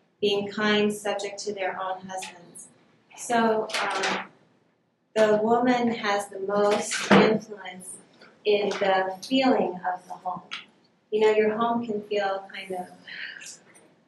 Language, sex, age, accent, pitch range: Chinese, female, 30-49, American, 190-215 Hz